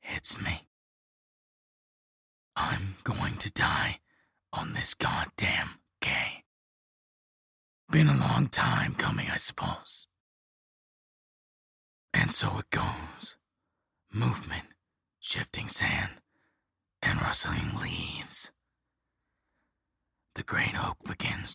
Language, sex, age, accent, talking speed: English, male, 30-49, American, 85 wpm